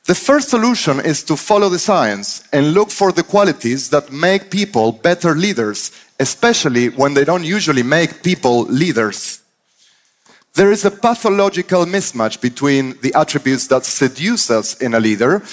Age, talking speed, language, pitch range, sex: 30-49, 155 wpm, Persian, 130-190 Hz, male